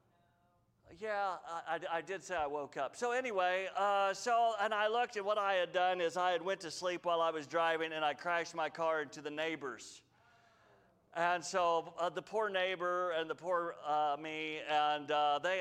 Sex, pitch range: male, 165-210 Hz